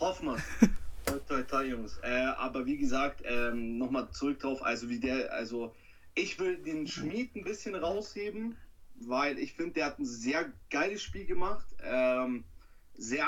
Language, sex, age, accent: German, male, 30-49, German